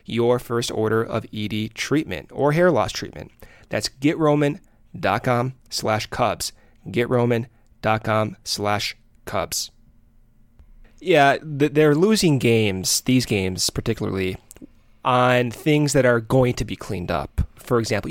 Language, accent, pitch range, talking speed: English, American, 110-145 Hz, 120 wpm